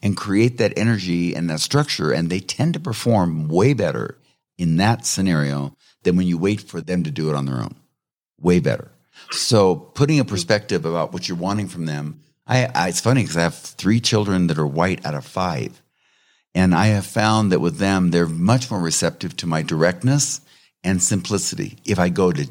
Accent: American